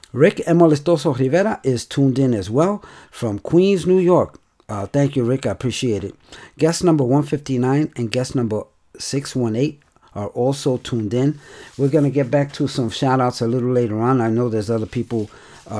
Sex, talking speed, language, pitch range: male, 180 wpm, English, 105-130 Hz